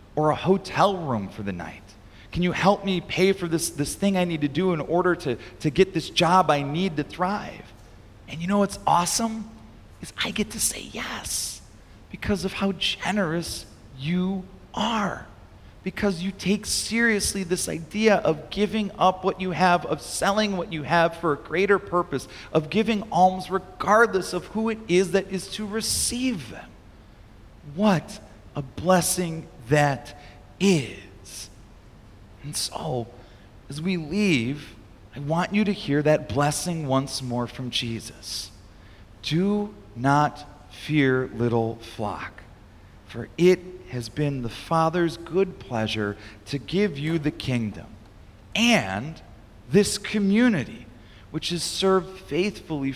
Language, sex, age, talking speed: English, male, 40-59, 145 wpm